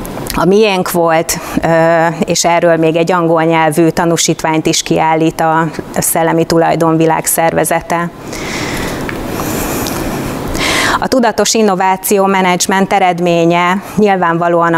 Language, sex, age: Hungarian, female, 30-49